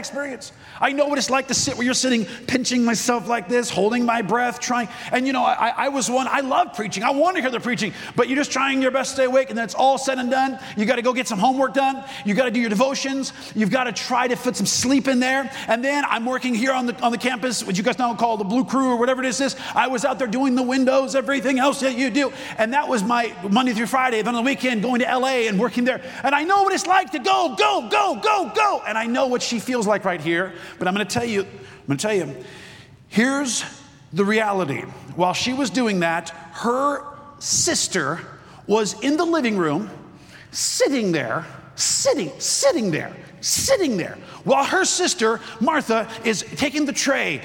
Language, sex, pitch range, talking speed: English, male, 225-270 Hz, 240 wpm